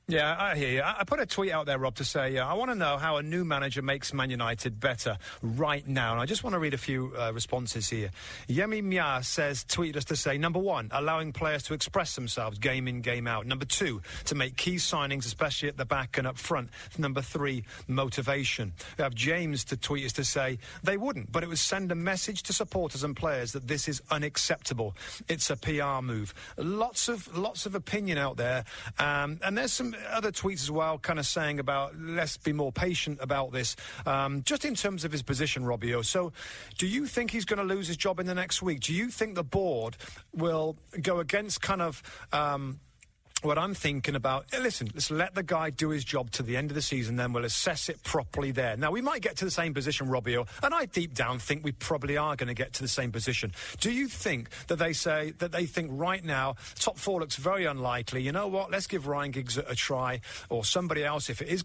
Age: 40-59